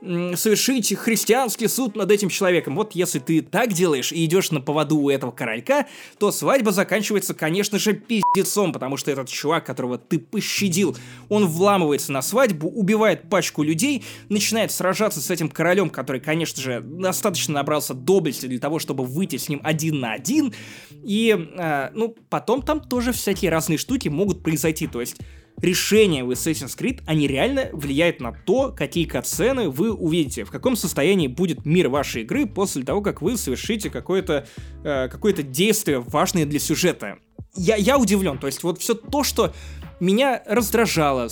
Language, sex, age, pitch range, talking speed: Russian, male, 20-39, 145-205 Hz, 165 wpm